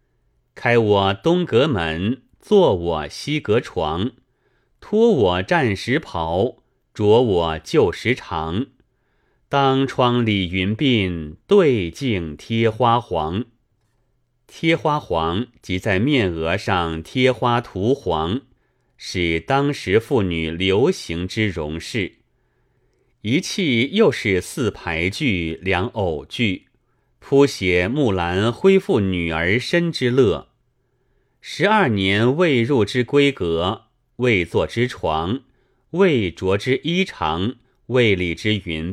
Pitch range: 90-130 Hz